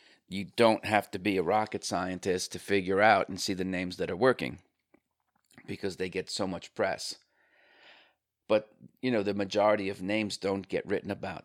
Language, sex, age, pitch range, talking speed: English, male, 40-59, 90-105 Hz, 185 wpm